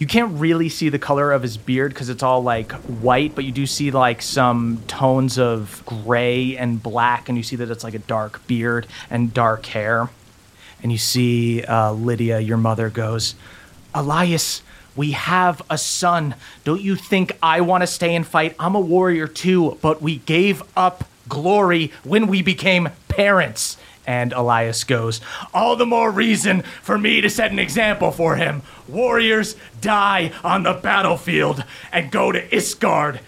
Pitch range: 120-195 Hz